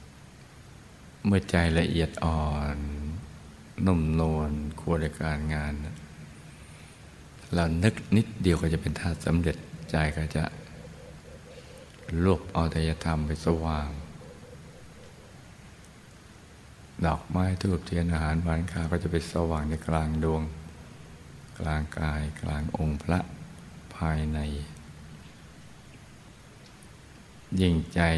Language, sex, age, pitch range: Thai, male, 60-79, 75-85 Hz